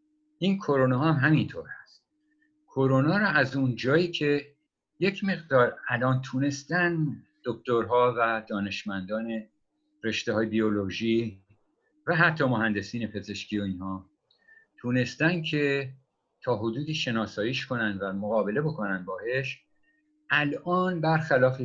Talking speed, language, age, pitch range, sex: 110 wpm, Persian, 50-69, 115-165 Hz, male